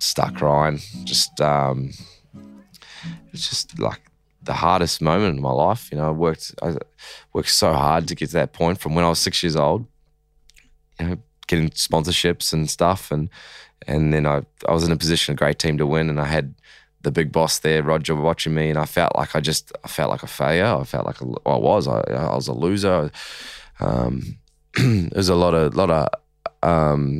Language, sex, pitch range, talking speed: English, male, 75-85 Hz, 215 wpm